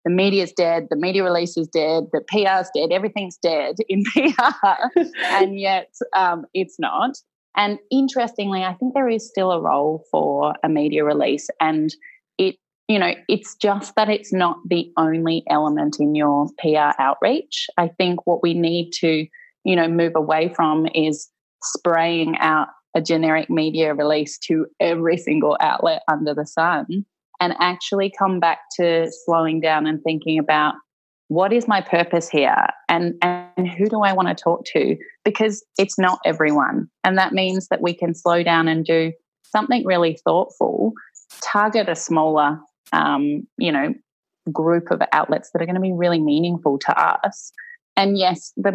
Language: English